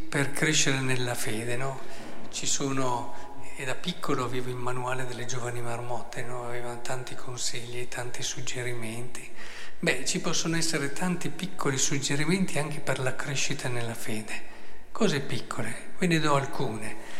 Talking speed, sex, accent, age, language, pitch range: 145 wpm, male, native, 50-69, Italian, 125-155 Hz